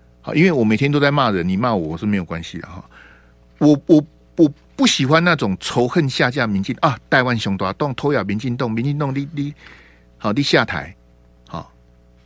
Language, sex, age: Chinese, male, 50-69